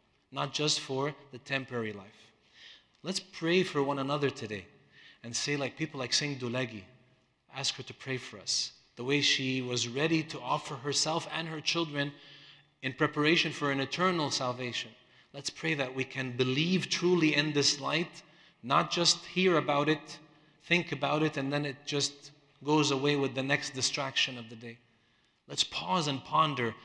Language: English